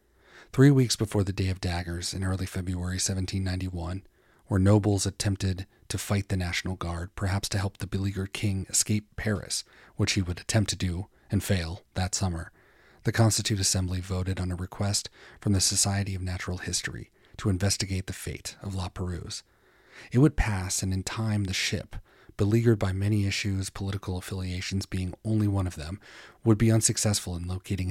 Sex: male